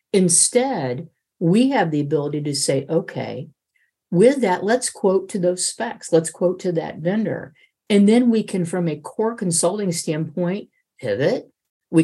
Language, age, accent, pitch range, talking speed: English, 50-69, American, 140-185 Hz, 155 wpm